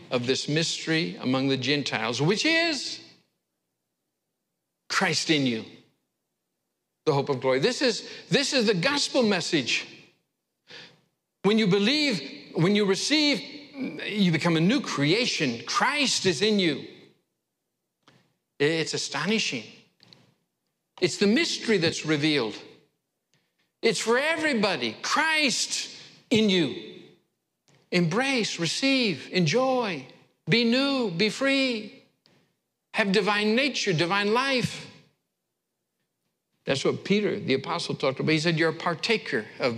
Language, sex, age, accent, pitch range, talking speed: English, male, 60-79, American, 160-230 Hz, 115 wpm